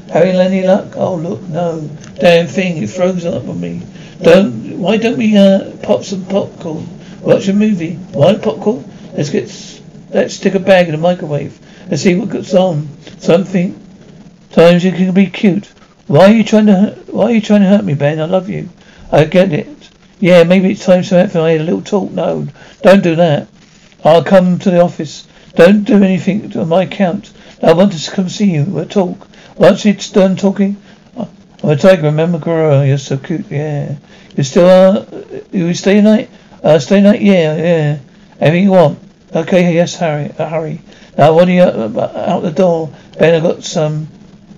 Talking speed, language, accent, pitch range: 190 wpm, English, British, 165-195 Hz